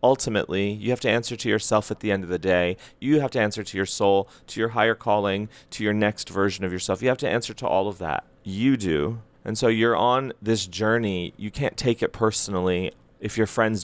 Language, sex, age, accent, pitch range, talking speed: English, male, 30-49, American, 100-125 Hz, 235 wpm